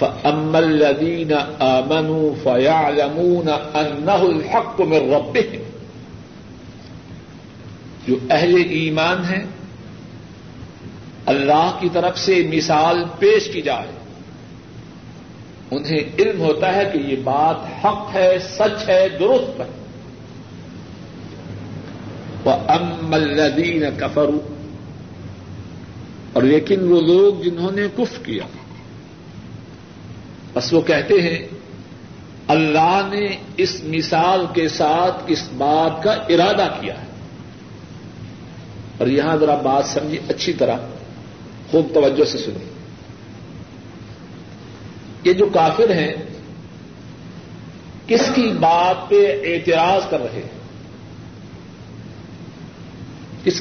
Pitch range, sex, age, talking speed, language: 145-185 Hz, male, 60-79, 90 wpm, Urdu